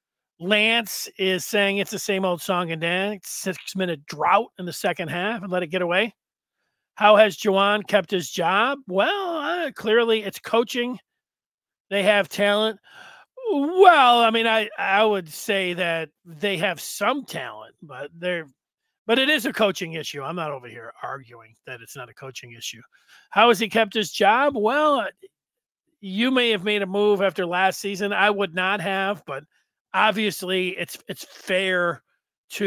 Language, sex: English, male